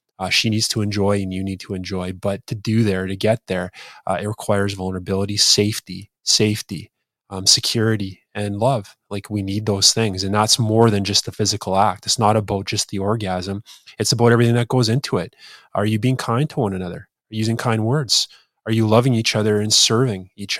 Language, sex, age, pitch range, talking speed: English, male, 20-39, 100-120 Hz, 205 wpm